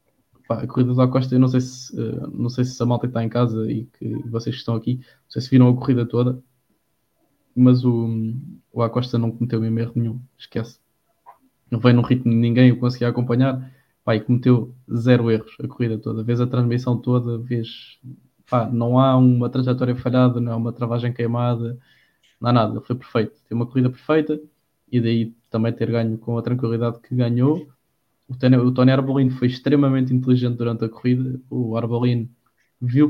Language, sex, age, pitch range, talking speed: English, male, 20-39, 115-130 Hz, 185 wpm